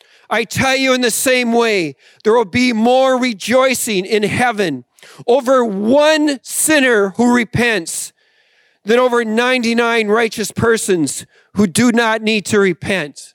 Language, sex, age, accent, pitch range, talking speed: English, male, 40-59, American, 205-255 Hz, 135 wpm